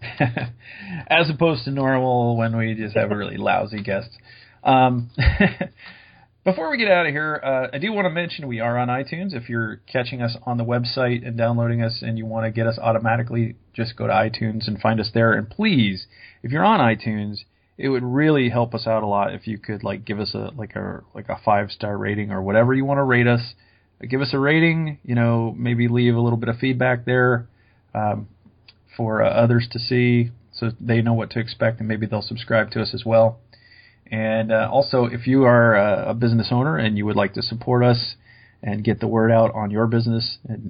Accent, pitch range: American, 110-125 Hz